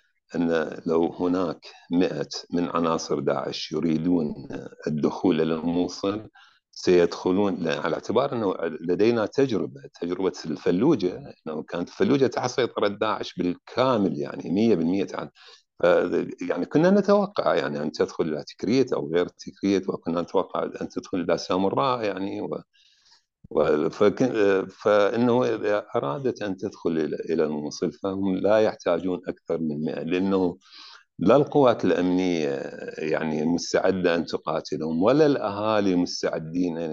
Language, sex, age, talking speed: Arabic, male, 50-69, 120 wpm